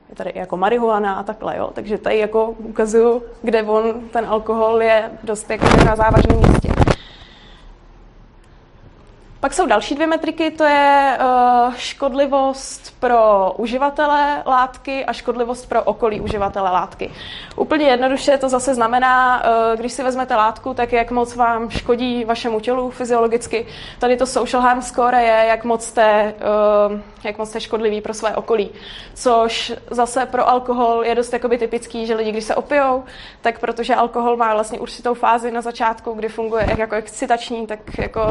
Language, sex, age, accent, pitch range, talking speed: Czech, female, 20-39, native, 220-255 Hz, 150 wpm